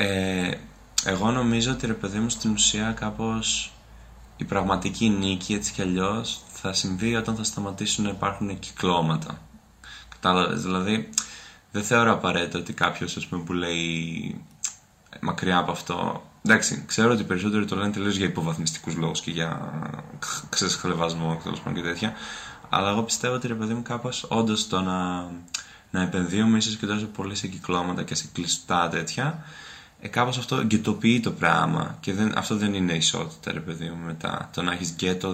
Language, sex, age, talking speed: Greek, male, 20-39, 160 wpm